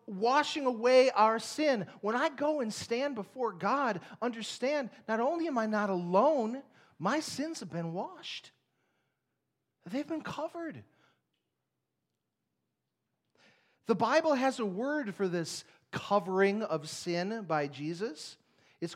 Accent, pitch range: American, 145-230 Hz